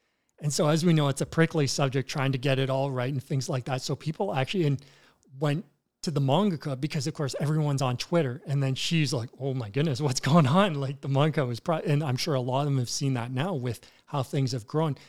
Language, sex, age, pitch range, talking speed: English, male, 40-59, 130-155 Hz, 255 wpm